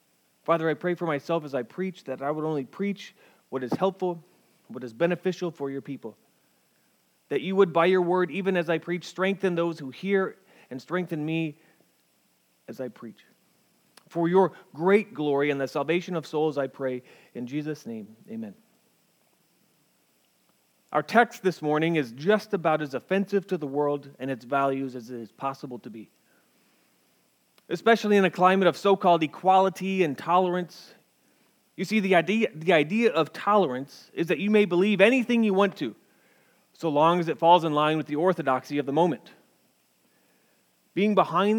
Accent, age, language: American, 30-49, English